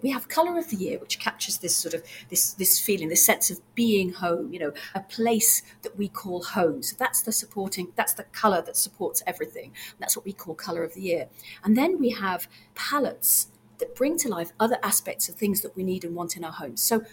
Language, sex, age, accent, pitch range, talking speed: English, female, 40-59, British, 195-250 Hz, 240 wpm